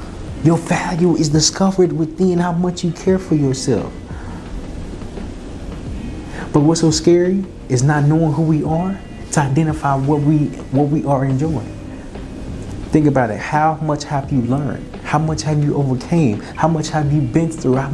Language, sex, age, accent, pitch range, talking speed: English, male, 30-49, American, 115-160 Hz, 165 wpm